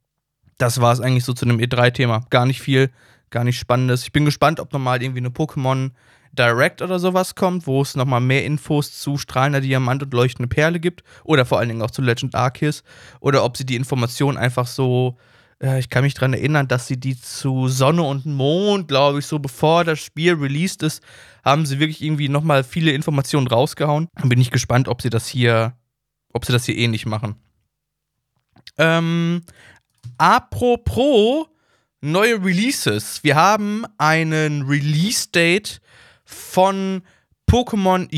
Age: 20-39